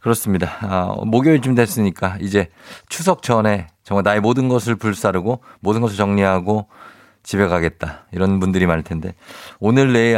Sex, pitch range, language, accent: male, 100-130 Hz, Korean, native